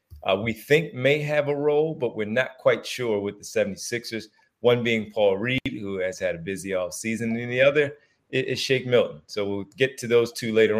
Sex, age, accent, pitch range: male, 30-49, American, 100-120 Hz